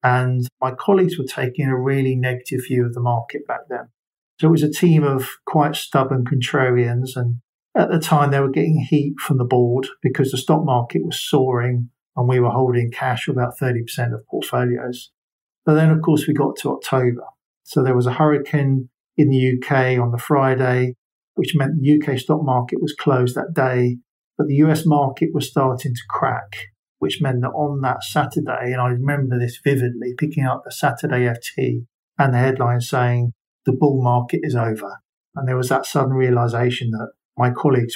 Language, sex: English, male